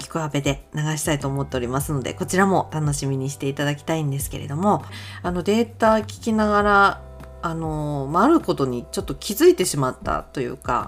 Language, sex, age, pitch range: Japanese, female, 40-59, 140-200 Hz